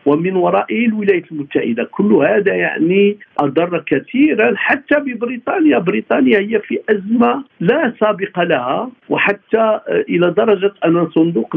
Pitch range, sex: 155-240 Hz, male